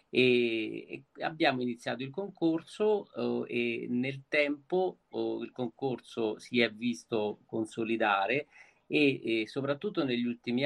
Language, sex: Italian, male